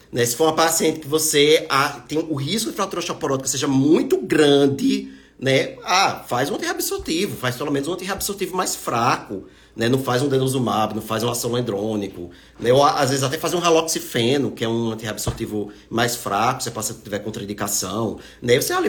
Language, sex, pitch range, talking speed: Portuguese, male, 120-165 Hz, 185 wpm